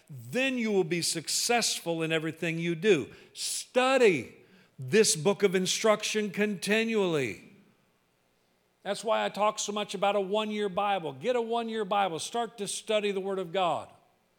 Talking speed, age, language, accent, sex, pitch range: 150 wpm, 50-69, English, American, male, 155-225 Hz